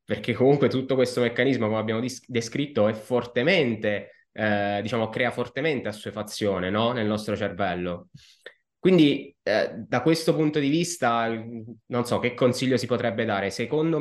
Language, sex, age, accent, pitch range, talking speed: Italian, male, 20-39, native, 110-140 Hz, 140 wpm